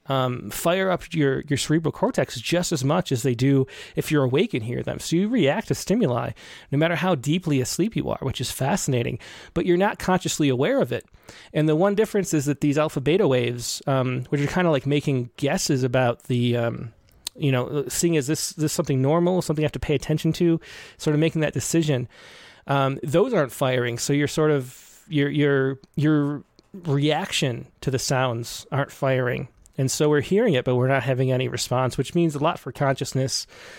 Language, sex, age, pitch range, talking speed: English, male, 30-49, 130-160 Hz, 205 wpm